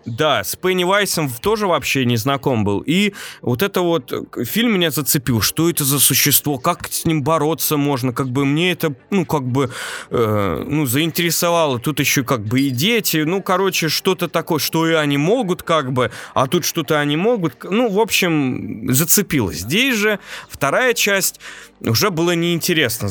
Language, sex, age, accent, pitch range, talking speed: Russian, male, 20-39, native, 130-185 Hz, 175 wpm